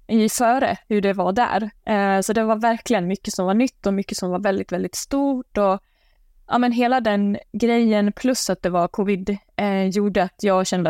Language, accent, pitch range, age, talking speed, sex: Swedish, native, 180-215 Hz, 20-39, 210 wpm, female